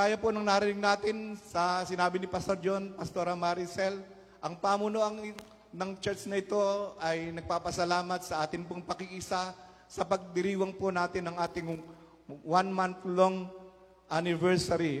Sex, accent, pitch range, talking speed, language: male, native, 185-215 Hz, 130 wpm, Filipino